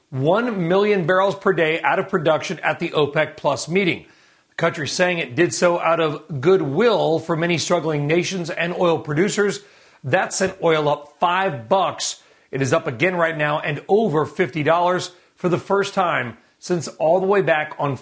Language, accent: English, American